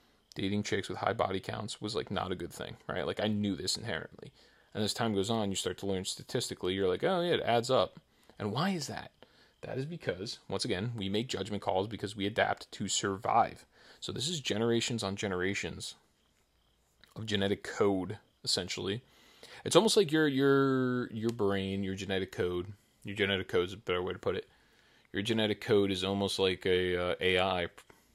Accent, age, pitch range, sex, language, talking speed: American, 30-49, 95-110 Hz, male, English, 195 wpm